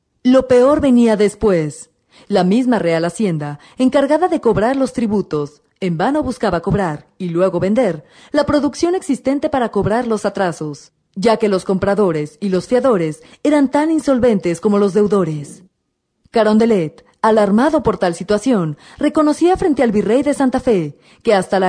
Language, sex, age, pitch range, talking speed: Spanish, female, 40-59, 170-255 Hz, 150 wpm